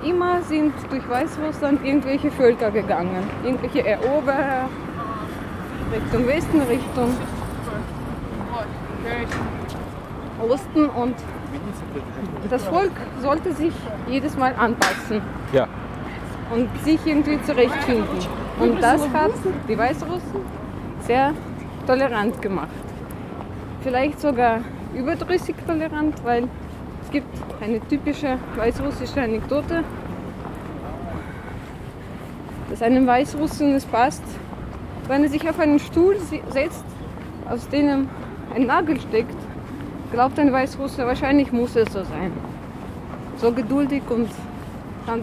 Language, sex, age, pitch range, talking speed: German, female, 20-39, 235-295 Hz, 95 wpm